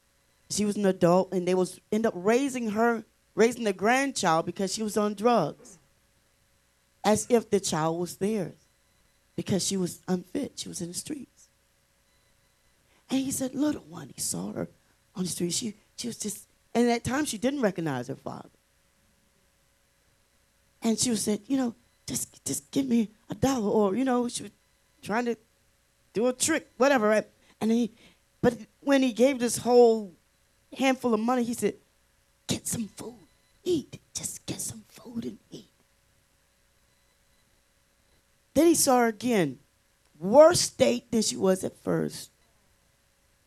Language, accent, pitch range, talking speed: English, American, 200-250 Hz, 165 wpm